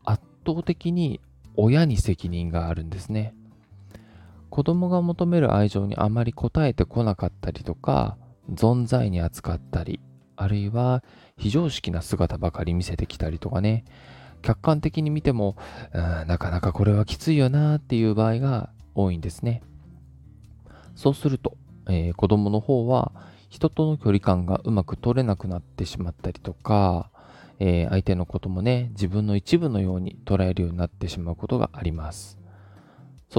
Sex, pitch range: male, 90-130 Hz